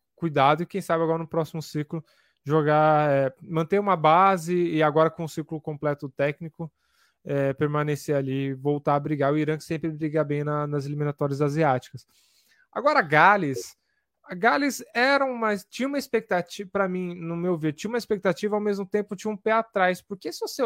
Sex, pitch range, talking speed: male, 150-195 Hz, 185 wpm